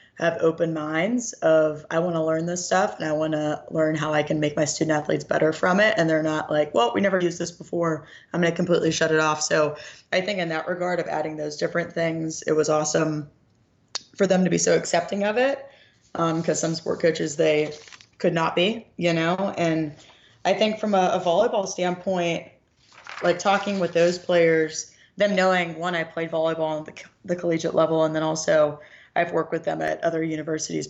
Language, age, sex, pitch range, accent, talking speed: English, 20-39, female, 155-180 Hz, American, 210 wpm